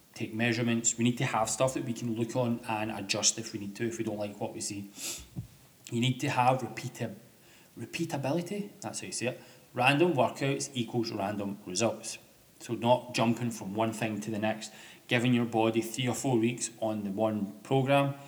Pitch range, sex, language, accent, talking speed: 110-125 Hz, male, English, British, 195 wpm